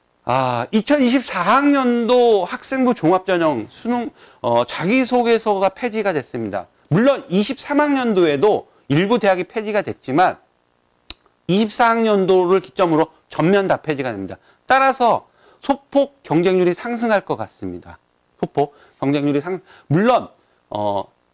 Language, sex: Korean, male